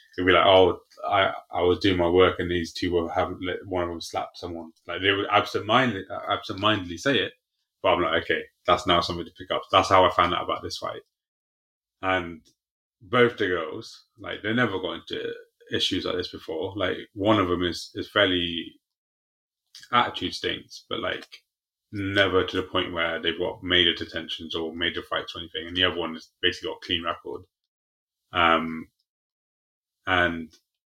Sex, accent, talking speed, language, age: male, British, 185 wpm, English, 30-49